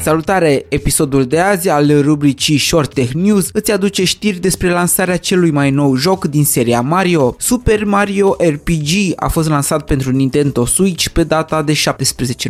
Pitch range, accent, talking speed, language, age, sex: 135-170 Hz, native, 165 wpm, Romanian, 20-39, male